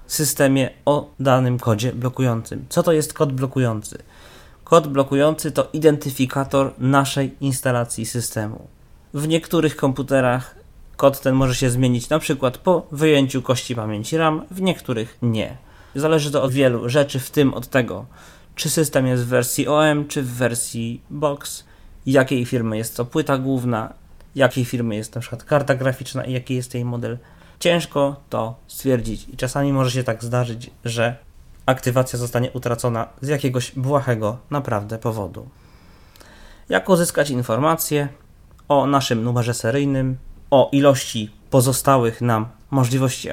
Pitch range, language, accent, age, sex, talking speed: 120-140 Hz, Polish, native, 20-39, male, 140 wpm